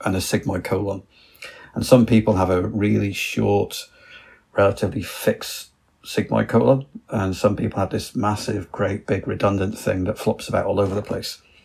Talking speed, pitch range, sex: 165 wpm, 95-115 Hz, male